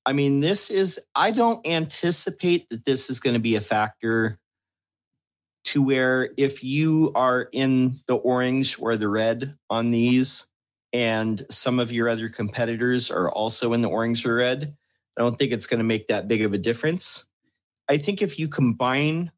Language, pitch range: English, 110-130 Hz